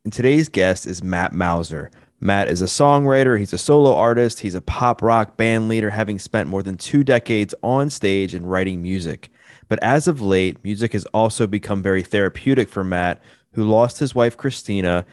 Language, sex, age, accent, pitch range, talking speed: English, male, 20-39, American, 95-120 Hz, 190 wpm